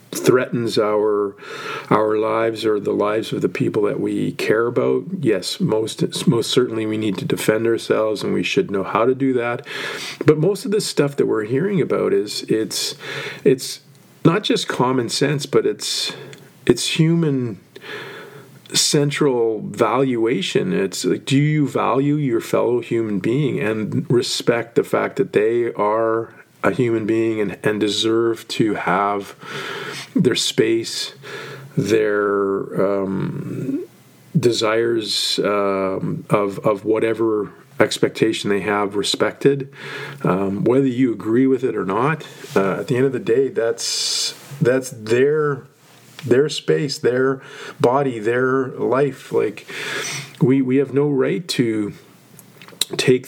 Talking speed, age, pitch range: 135 wpm, 40-59, 110-155 Hz